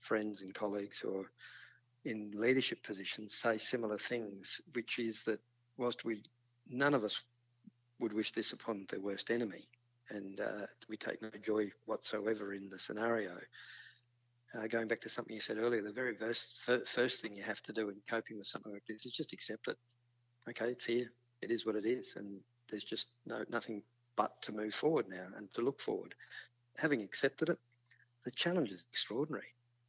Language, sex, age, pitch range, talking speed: English, male, 50-69, 105-120 Hz, 185 wpm